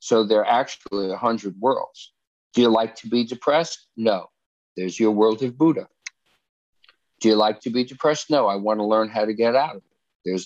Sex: male